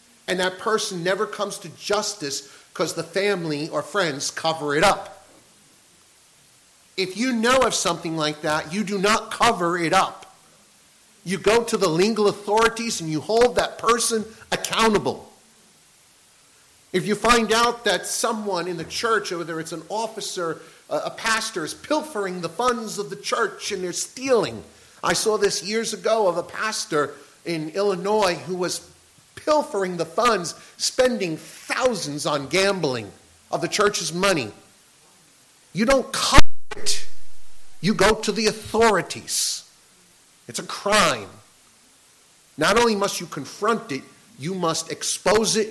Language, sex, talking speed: English, male, 145 wpm